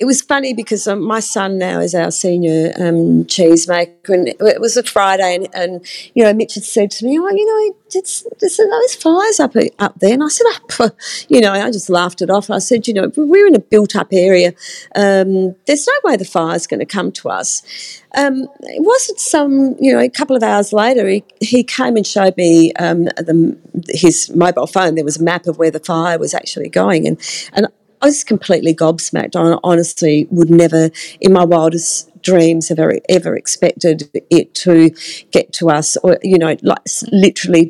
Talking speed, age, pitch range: 205 wpm, 40-59, 170-235 Hz